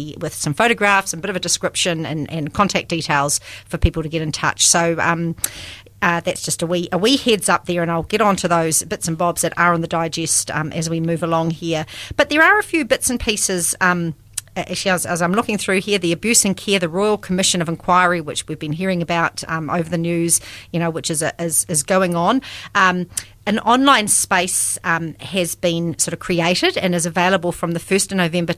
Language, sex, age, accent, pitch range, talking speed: English, female, 40-59, Australian, 165-195 Hz, 230 wpm